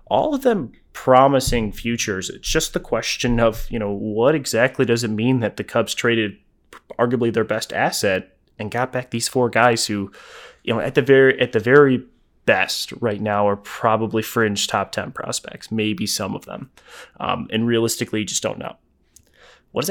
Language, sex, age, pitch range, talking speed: English, male, 20-39, 105-130 Hz, 185 wpm